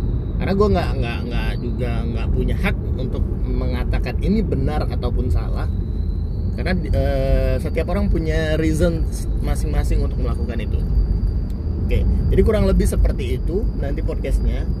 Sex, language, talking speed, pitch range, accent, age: male, Indonesian, 135 wpm, 75-90 Hz, native, 20-39